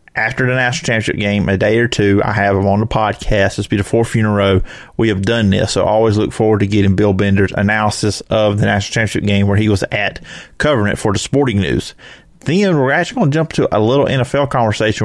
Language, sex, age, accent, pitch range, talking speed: English, male, 30-49, American, 105-125 Hz, 255 wpm